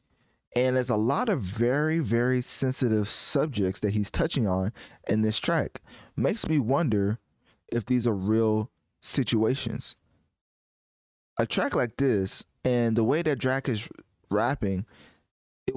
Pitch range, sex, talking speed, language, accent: 105-130 Hz, male, 135 wpm, English, American